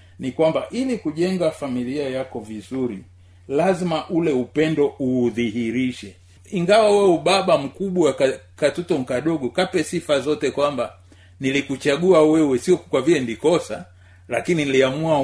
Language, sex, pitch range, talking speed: Swahili, male, 120-160 Hz, 115 wpm